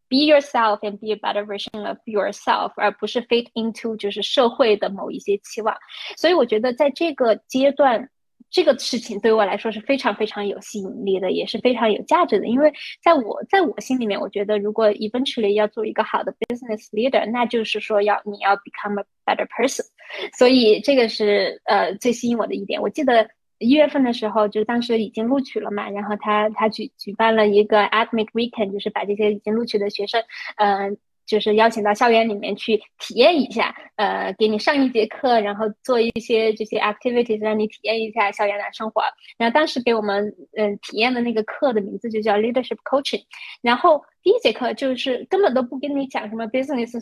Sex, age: female, 20-39